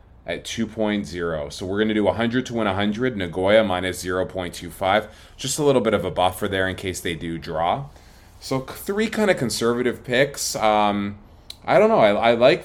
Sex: male